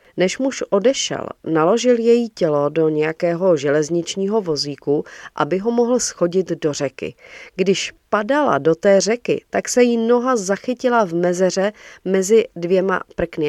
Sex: female